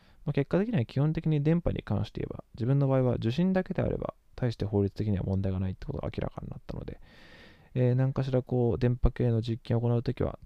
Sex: male